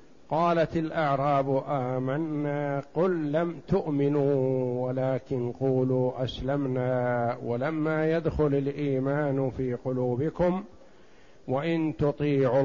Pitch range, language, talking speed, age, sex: 125-150 Hz, Arabic, 75 wpm, 50-69, male